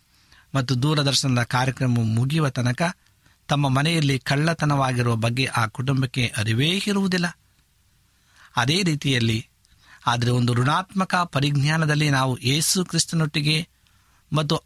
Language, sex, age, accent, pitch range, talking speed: Kannada, male, 60-79, native, 120-155 Hz, 95 wpm